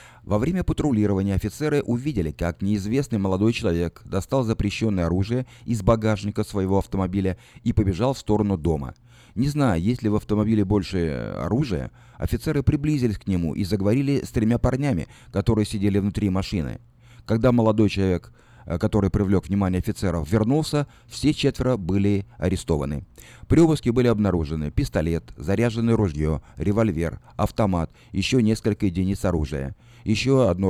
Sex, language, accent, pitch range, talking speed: male, Russian, native, 90-120 Hz, 135 wpm